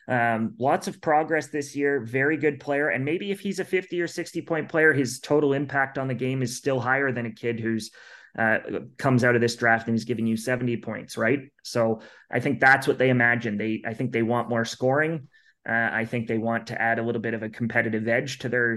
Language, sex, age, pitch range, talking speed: English, male, 30-49, 115-135 Hz, 240 wpm